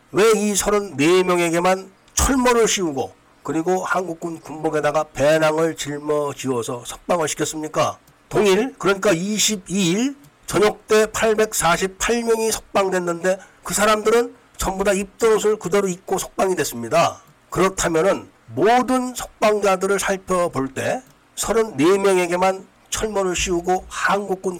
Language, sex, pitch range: Korean, male, 165-210 Hz